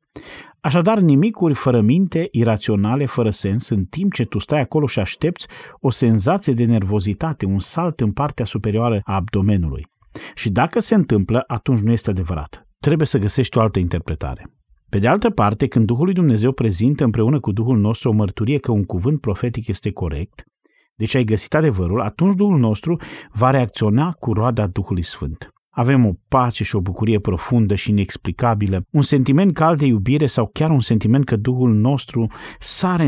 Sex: male